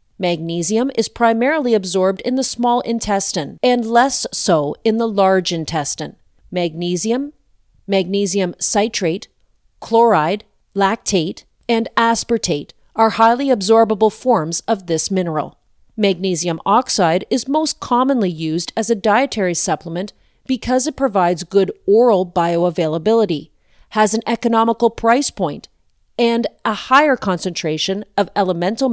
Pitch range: 180-235 Hz